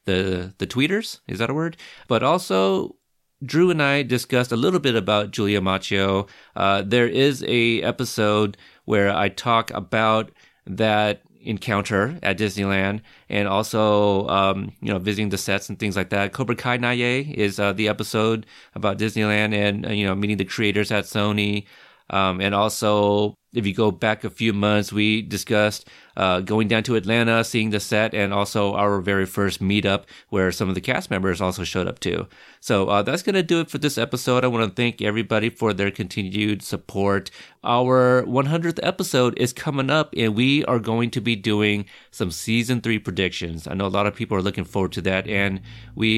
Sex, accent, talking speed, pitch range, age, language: male, American, 190 wpm, 100-120 Hz, 30-49, English